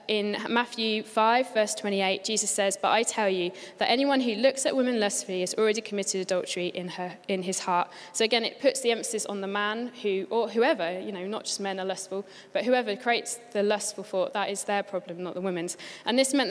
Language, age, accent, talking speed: English, 20-39, British, 225 wpm